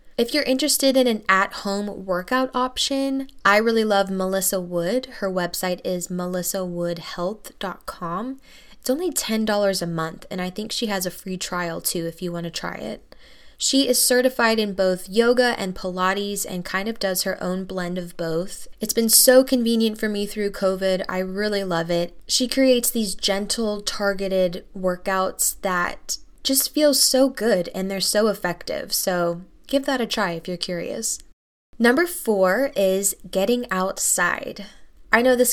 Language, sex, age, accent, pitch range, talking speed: English, female, 10-29, American, 185-230 Hz, 165 wpm